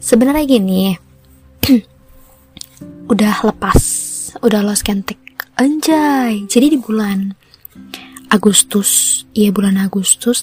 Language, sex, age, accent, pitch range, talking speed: Indonesian, female, 20-39, native, 195-245 Hz, 80 wpm